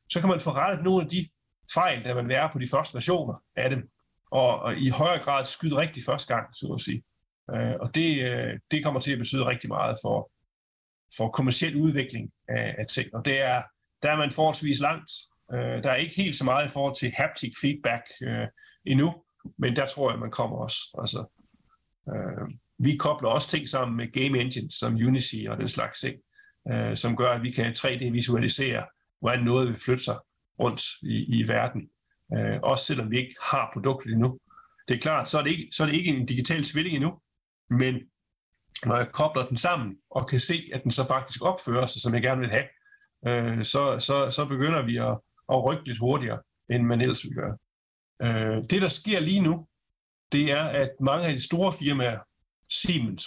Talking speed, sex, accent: 195 wpm, male, native